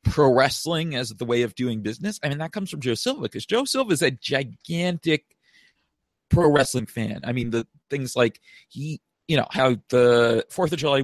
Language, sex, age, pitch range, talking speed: English, male, 40-59, 120-160 Hz, 200 wpm